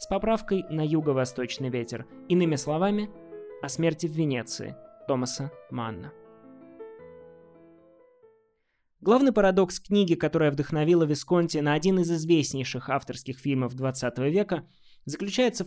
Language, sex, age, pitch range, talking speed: Russian, male, 20-39, 145-195 Hz, 105 wpm